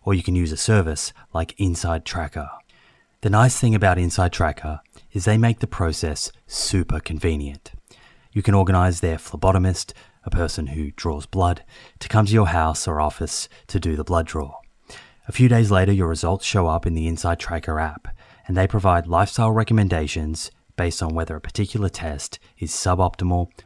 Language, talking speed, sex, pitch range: English, 180 wpm, male, 80-100 Hz